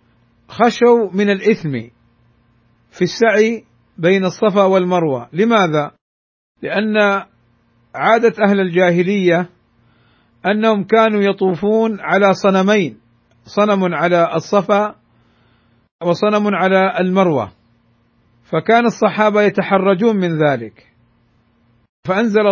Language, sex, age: Arabic, male, 50-69